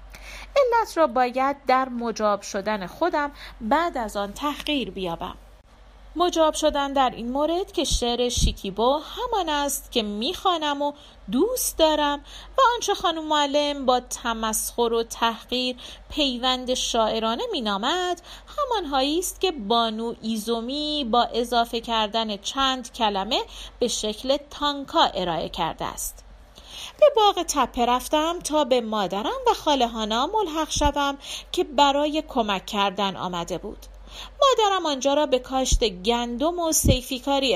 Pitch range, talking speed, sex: 230-305 Hz, 125 wpm, female